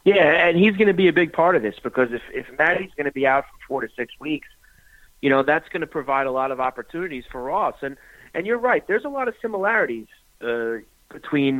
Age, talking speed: 30-49, 230 wpm